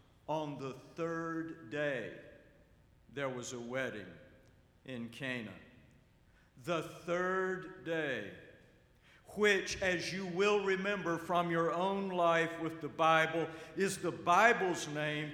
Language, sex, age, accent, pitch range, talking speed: English, male, 60-79, American, 110-170 Hz, 115 wpm